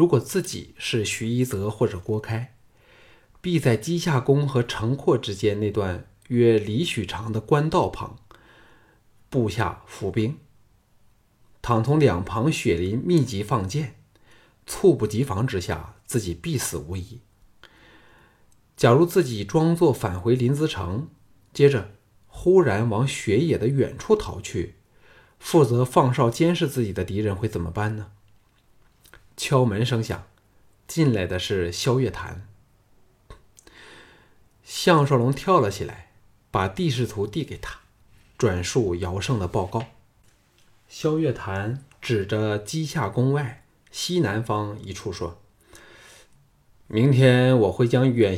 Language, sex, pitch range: Chinese, male, 105-135 Hz